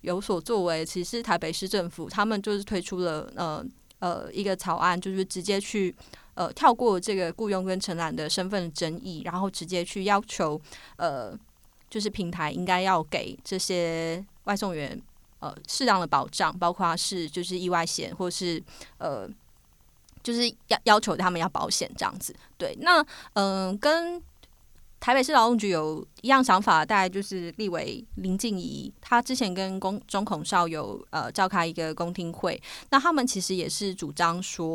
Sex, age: female, 20-39